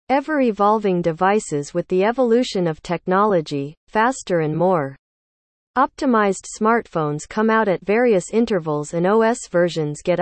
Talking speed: 130 wpm